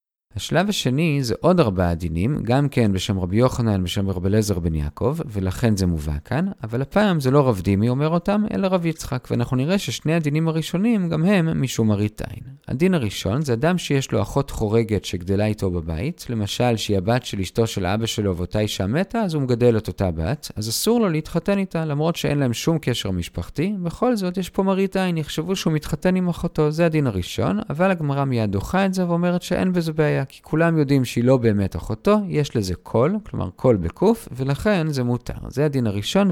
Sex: male